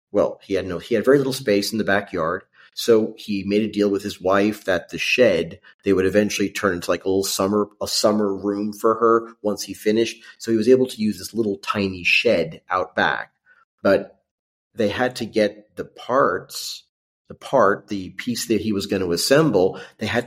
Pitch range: 95-115 Hz